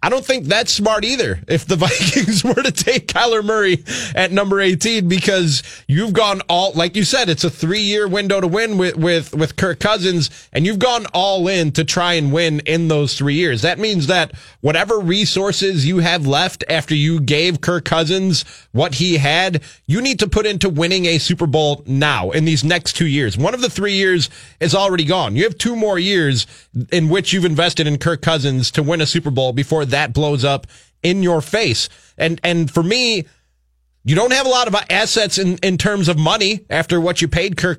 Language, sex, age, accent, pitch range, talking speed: English, male, 20-39, American, 150-190 Hz, 210 wpm